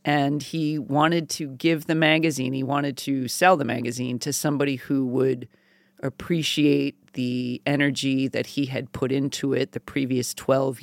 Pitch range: 130-150 Hz